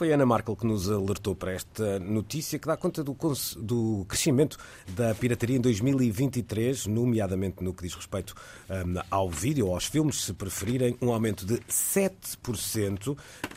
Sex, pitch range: male, 100-125 Hz